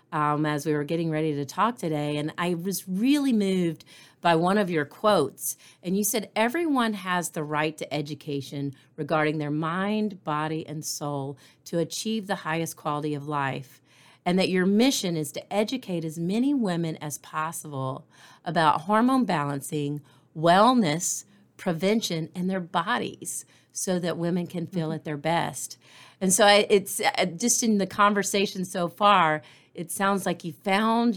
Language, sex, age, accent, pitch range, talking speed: English, female, 40-59, American, 150-200 Hz, 160 wpm